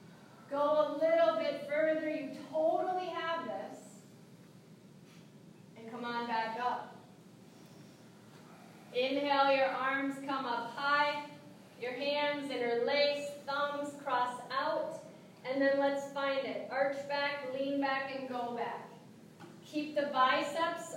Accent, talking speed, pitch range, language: American, 115 wpm, 235-290 Hz, English